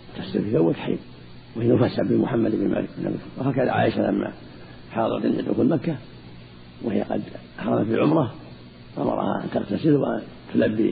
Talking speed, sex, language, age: 135 wpm, male, Arabic, 50-69